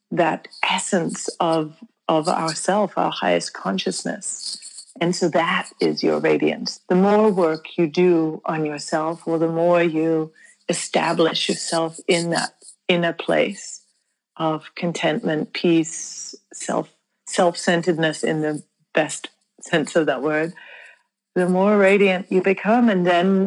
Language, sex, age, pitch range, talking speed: English, female, 40-59, 165-195 Hz, 130 wpm